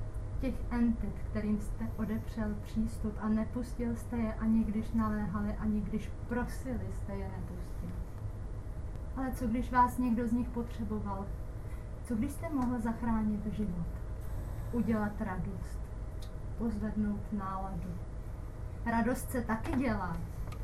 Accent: native